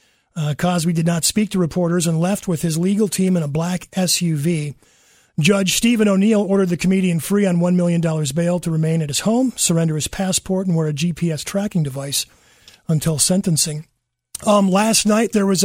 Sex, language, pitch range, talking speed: male, English, 170-195 Hz, 190 wpm